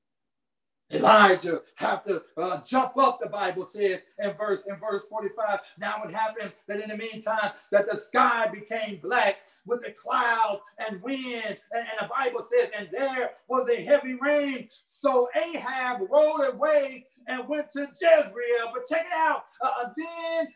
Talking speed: 165 wpm